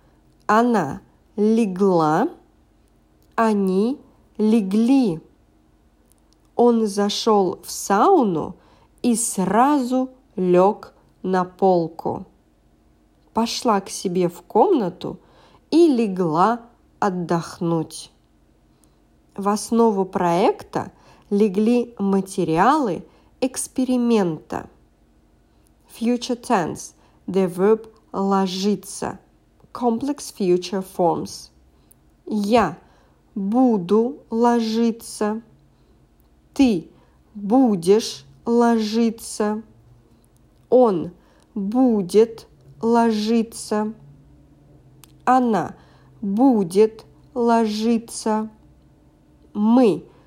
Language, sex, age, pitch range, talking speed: English, female, 40-59, 165-230 Hz, 55 wpm